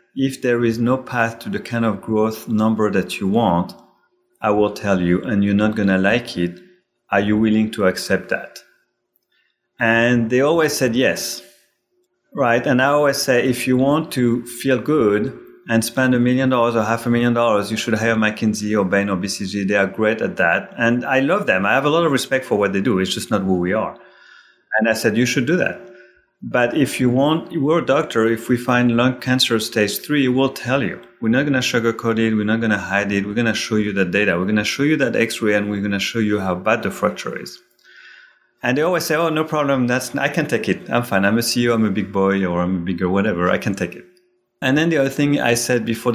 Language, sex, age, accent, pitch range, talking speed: English, male, 30-49, French, 105-130 Hz, 245 wpm